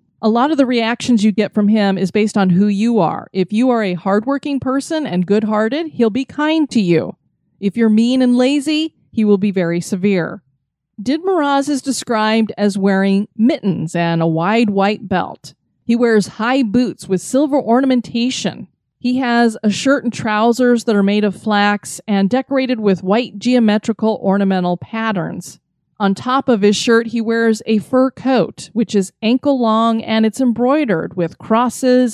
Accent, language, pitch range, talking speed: American, English, 195-255 Hz, 175 wpm